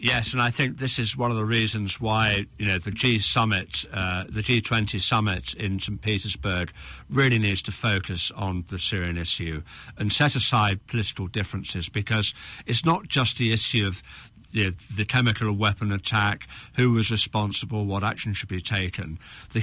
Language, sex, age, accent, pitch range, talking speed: English, male, 60-79, British, 100-120 Hz, 170 wpm